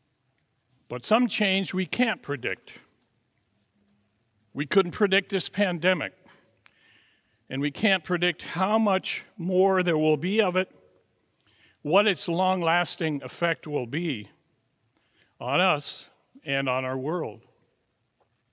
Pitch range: 130-185 Hz